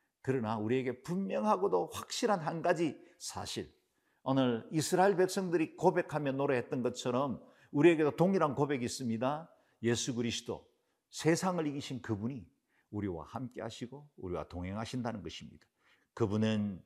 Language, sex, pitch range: Korean, male, 110-155 Hz